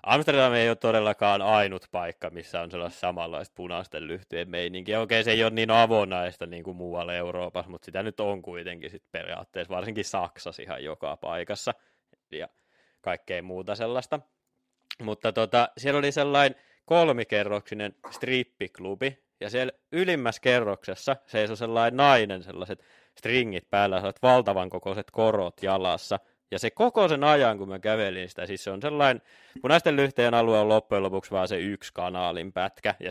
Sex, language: male, Finnish